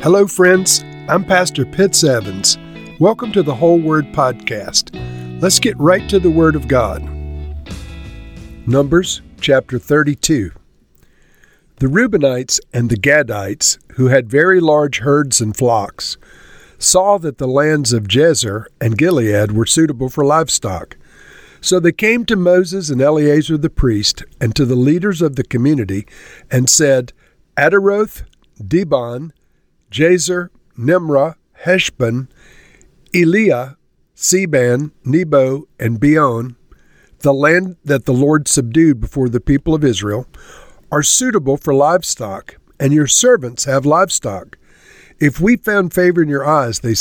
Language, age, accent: English, 50-69, American